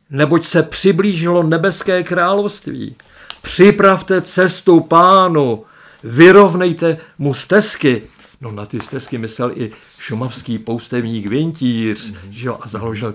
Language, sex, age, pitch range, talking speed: Czech, male, 50-69, 115-150 Hz, 105 wpm